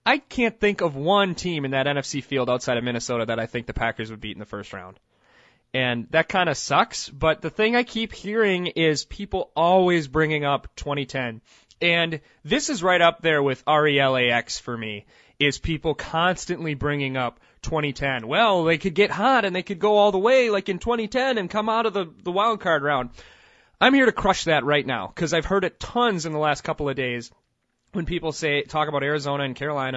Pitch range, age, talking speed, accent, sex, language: 140-200 Hz, 20-39, 215 wpm, American, male, English